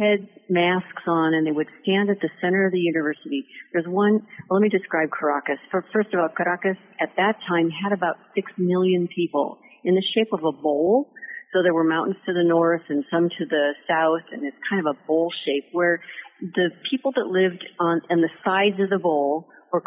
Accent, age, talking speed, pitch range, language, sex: American, 50-69, 210 wpm, 160-195 Hz, English, female